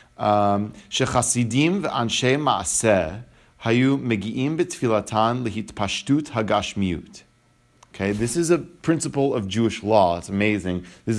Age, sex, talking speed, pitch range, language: 30-49, male, 90 wpm, 100-120 Hz, English